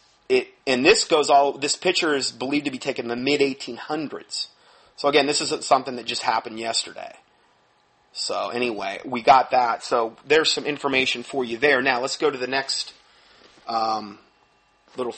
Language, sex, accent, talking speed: English, male, American, 175 wpm